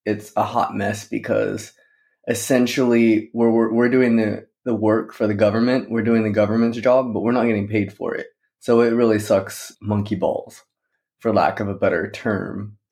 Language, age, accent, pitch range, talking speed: English, 20-39, American, 100-120 Hz, 185 wpm